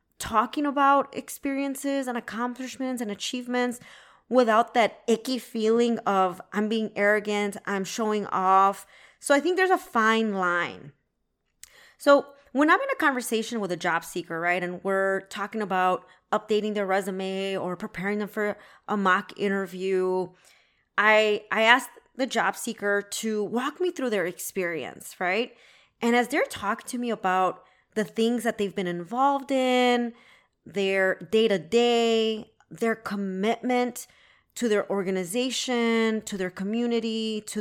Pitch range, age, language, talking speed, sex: 195-245 Hz, 20-39, English, 140 wpm, female